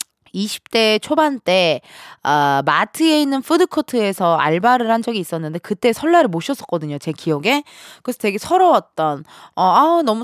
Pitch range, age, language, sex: 180-280 Hz, 20-39, Korean, female